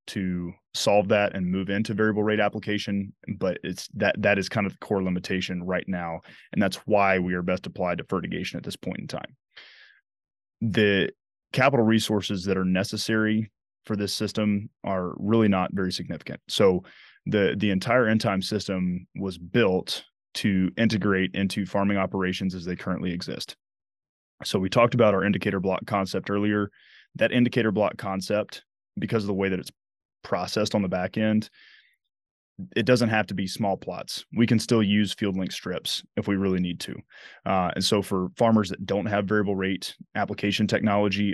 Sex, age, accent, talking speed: male, 20-39, American, 175 wpm